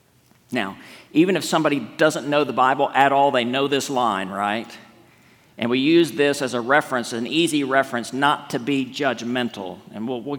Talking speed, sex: 185 wpm, male